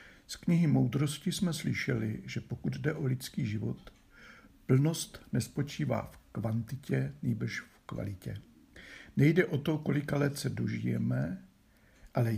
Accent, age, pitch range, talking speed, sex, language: native, 60-79, 105-145 Hz, 125 wpm, male, Czech